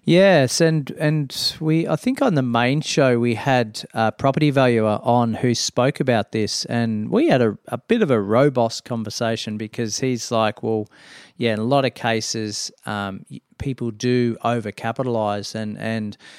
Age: 40-59